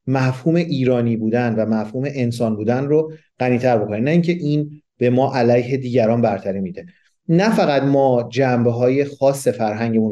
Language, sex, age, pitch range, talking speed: Persian, male, 40-59, 120-160 Hz, 155 wpm